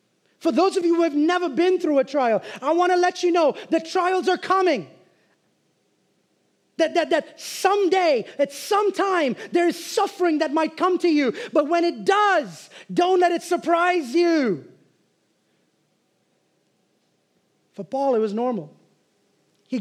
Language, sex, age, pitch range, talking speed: English, male, 30-49, 295-360 Hz, 155 wpm